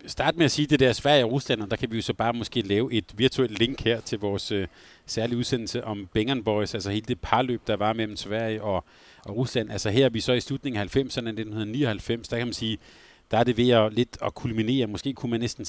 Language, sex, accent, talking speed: Danish, male, native, 260 wpm